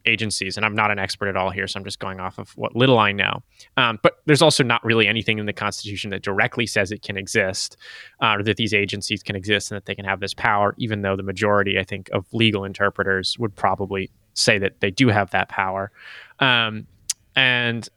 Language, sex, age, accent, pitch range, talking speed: English, male, 20-39, American, 100-120 Hz, 230 wpm